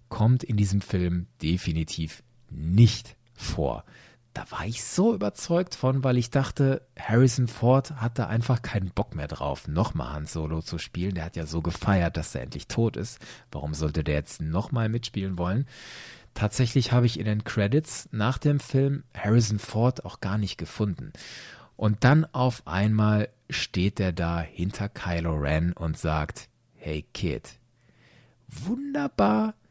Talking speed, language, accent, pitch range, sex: 155 wpm, German, German, 85-125 Hz, male